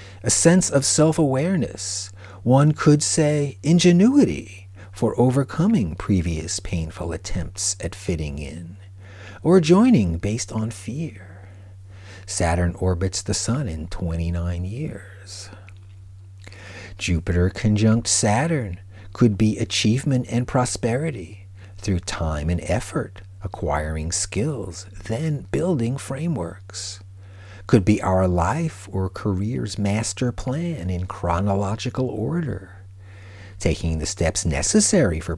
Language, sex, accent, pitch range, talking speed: English, male, American, 95-115 Hz, 105 wpm